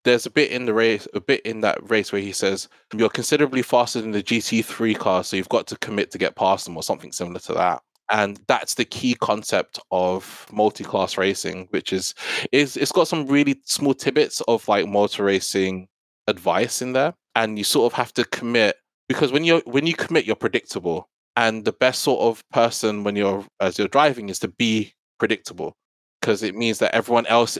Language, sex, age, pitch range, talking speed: English, male, 20-39, 100-125 Hz, 205 wpm